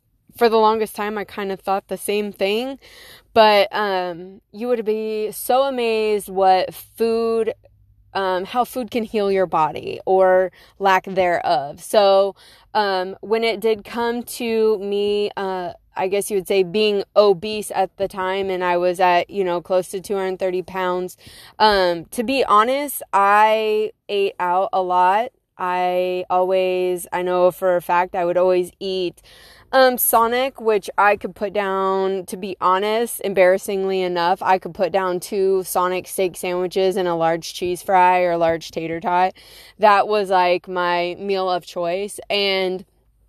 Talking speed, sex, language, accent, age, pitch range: 160 wpm, female, English, American, 20-39, 180-210 Hz